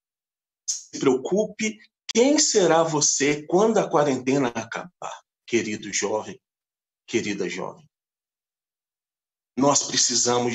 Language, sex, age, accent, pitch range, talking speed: Portuguese, male, 40-59, Brazilian, 135-160 Hz, 85 wpm